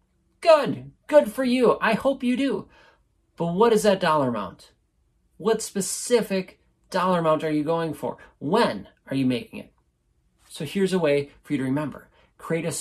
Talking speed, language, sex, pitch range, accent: 175 wpm, English, male, 135-200 Hz, American